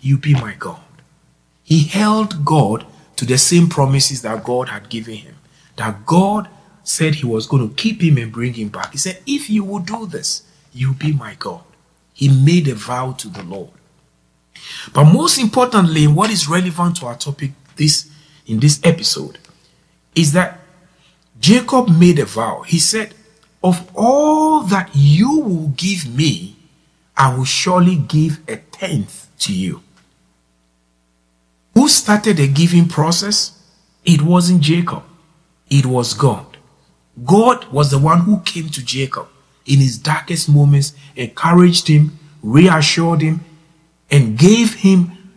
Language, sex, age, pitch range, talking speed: English, male, 50-69, 140-180 Hz, 150 wpm